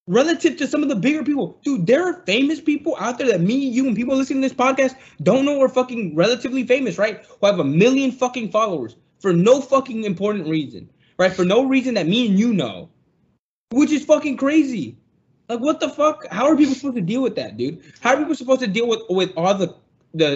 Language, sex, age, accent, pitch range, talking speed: English, male, 20-39, American, 175-255 Hz, 230 wpm